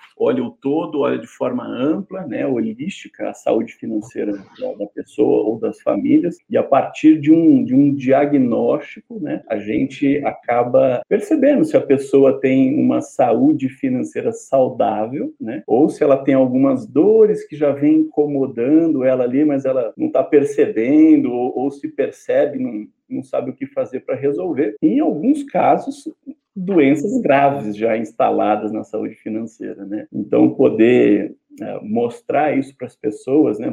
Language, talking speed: Portuguese, 155 wpm